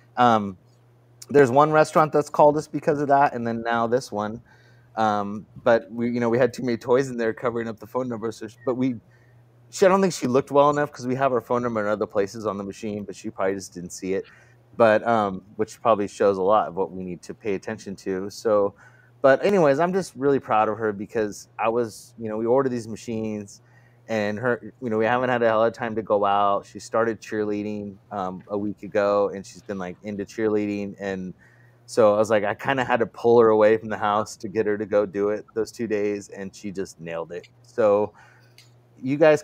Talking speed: 235 wpm